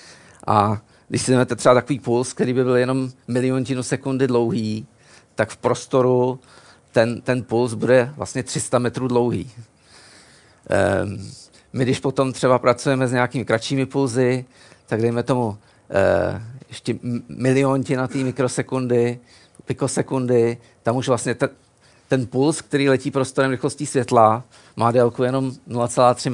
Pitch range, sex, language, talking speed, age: 120-135 Hz, male, Czech, 130 wpm, 50-69